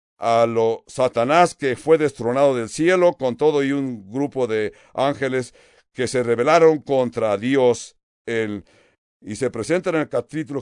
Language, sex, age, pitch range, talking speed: English, male, 60-79, 120-175 Hz, 155 wpm